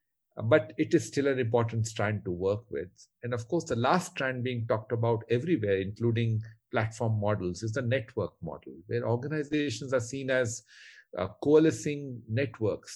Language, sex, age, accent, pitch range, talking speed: English, male, 40-59, Indian, 110-145 Hz, 160 wpm